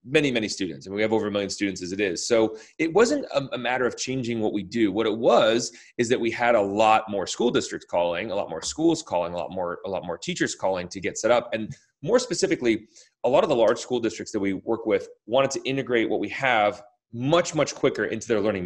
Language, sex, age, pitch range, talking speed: English, male, 30-49, 105-130 Hz, 265 wpm